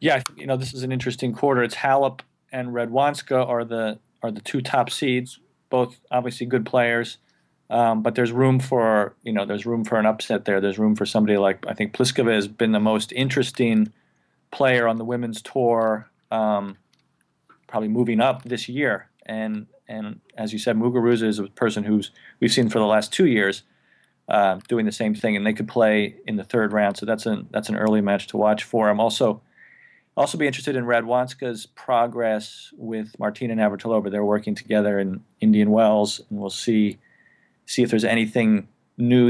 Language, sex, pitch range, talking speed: English, male, 105-120 Hz, 190 wpm